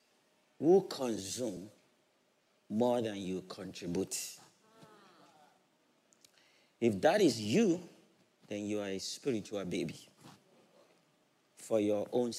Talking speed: 90 wpm